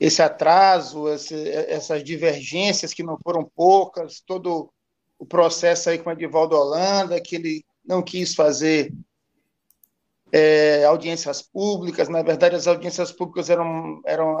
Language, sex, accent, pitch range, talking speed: Portuguese, male, Brazilian, 165-200 Hz, 135 wpm